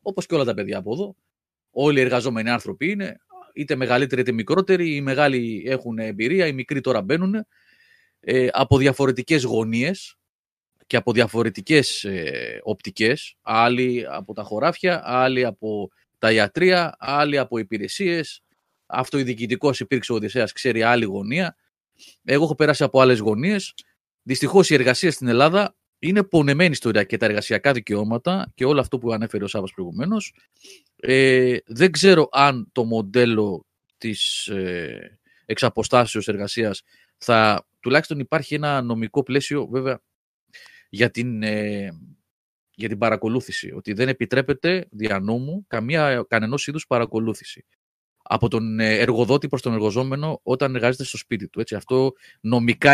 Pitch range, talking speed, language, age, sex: 115-150 Hz, 140 wpm, Greek, 30-49, male